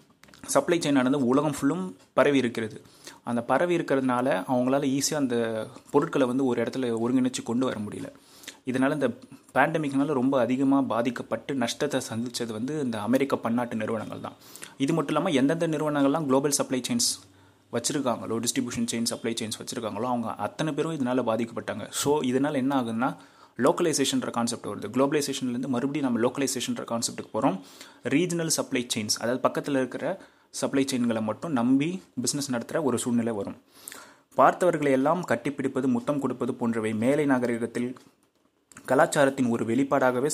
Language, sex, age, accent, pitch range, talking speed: Tamil, male, 30-49, native, 120-145 Hz, 135 wpm